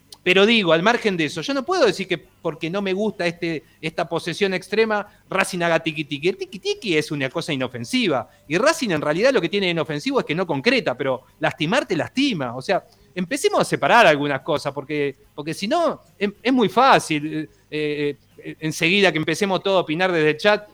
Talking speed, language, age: 195 wpm, Spanish, 40-59